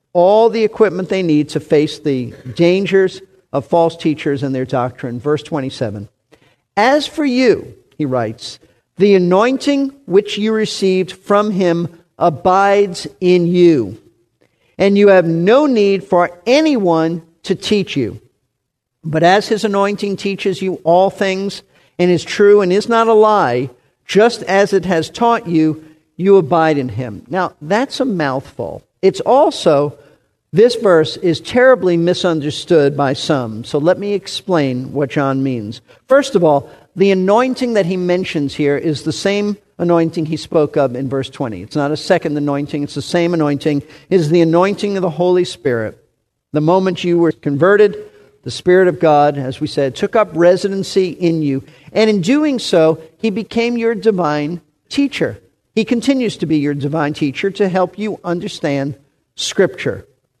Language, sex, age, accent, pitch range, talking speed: English, male, 50-69, American, 150-200 Hz, 160 wpm